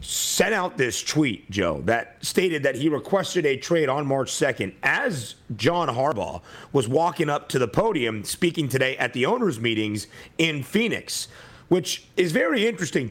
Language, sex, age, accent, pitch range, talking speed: English, male, 30-49, American, 125-175 Hz, 165 wpm